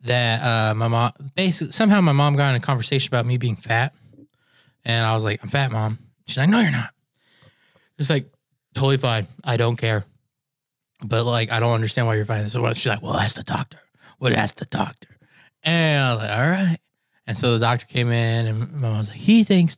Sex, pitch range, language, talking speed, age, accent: male, 115-135 Hz, English, 220 wpm, 20-39, American